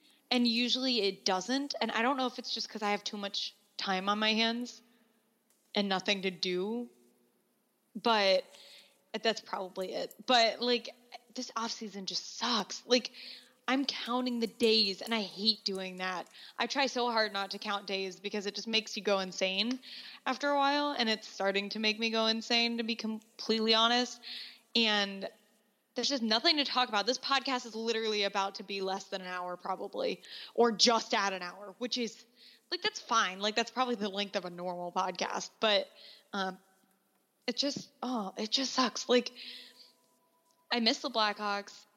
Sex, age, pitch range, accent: female, 10-29, 200-245 Hz, American